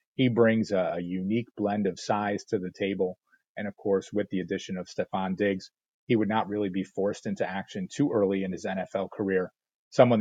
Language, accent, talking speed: English, American, 205 wpm